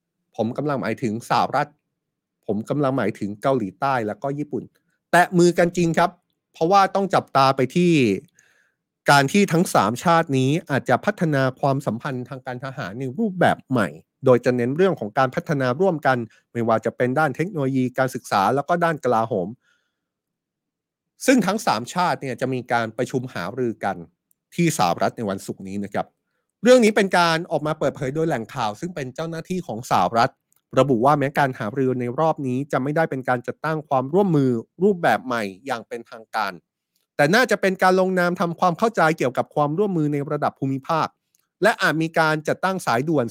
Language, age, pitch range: Thai, 30-49, 125-165 Hz